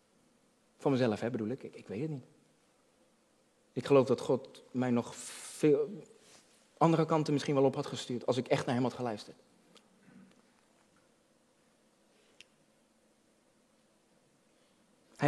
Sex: male